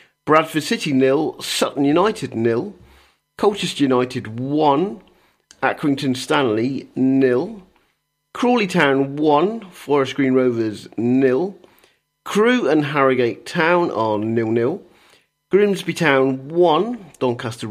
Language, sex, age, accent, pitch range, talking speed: English, male, 40-59, British, 125-170 Hz, 100 wpm